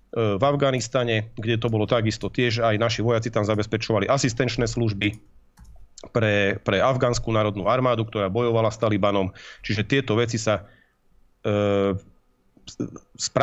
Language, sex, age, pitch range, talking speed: Slovak, male, 40-59, 105-120 Hz, 125 wpm